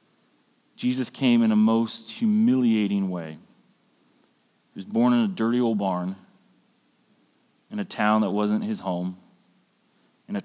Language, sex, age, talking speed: English, male, 30-49, 140 wpm